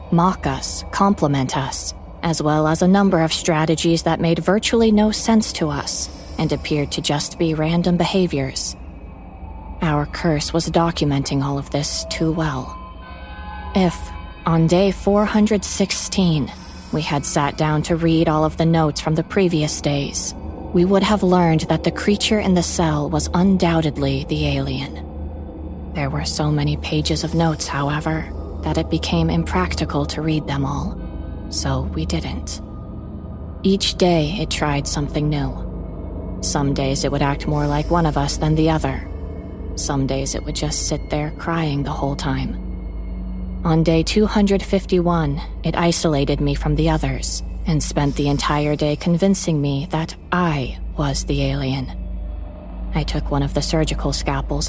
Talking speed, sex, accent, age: 155 wpm, female, American, 30-49